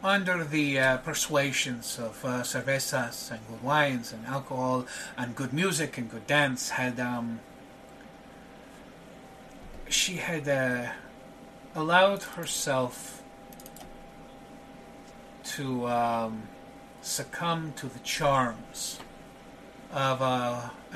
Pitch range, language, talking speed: 125-145 Hz, English, 95 wpm